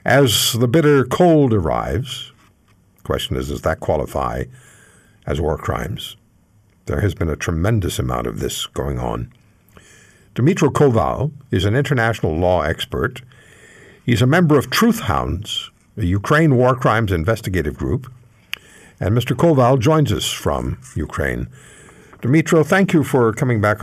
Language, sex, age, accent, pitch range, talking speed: English, male, 60-79, American, 85-130 Hz, 140 wpm